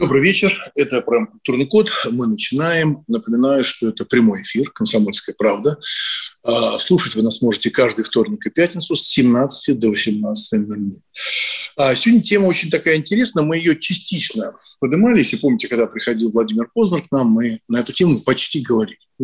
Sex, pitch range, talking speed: male, 120-195 Hz, 155 wpm